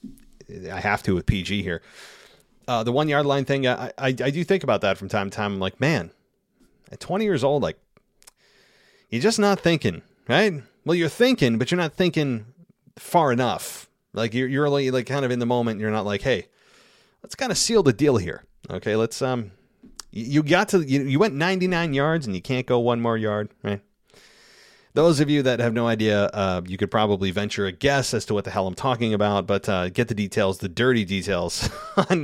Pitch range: 105-140 Hz